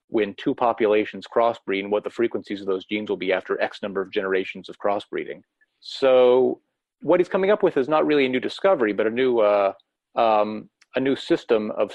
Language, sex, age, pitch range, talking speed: English, male, 30-49, 105-135 Hz, 205 wpm